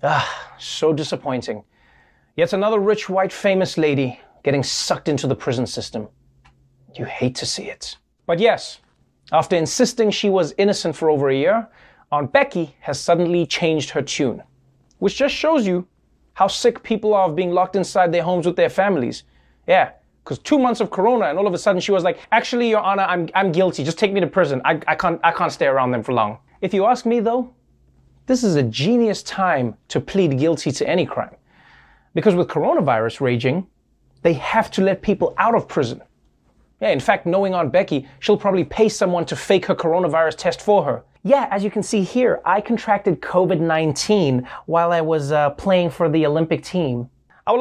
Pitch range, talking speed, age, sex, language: 150-205 Hz, 195 wpm, 30-49, male, English